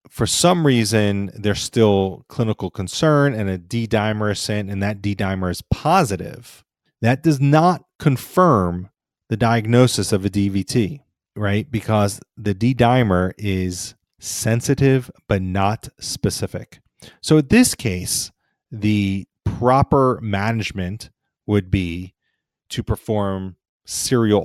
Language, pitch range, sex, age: English, 95-115 Hz, male, 30-49